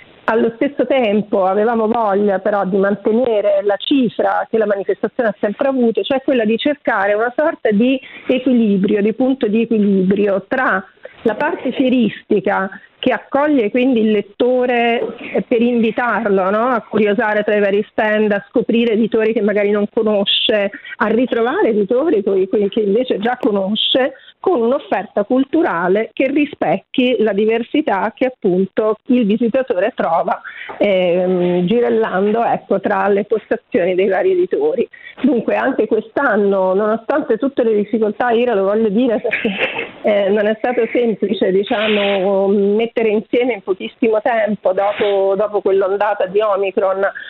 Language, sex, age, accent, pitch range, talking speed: Italian, female, 40-59, native, 200-250 Hz, 140 wpm